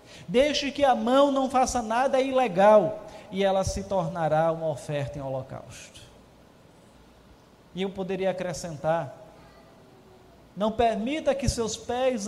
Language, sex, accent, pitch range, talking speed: Portuguese, male, Brazilian, 170-235 Hz, 120 wpm